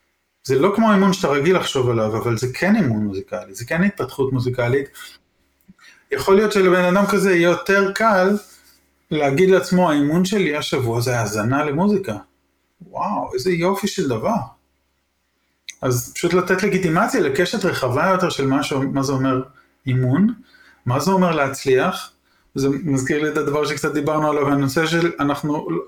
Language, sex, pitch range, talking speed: English, male, 125-170 Hz, 155 wpm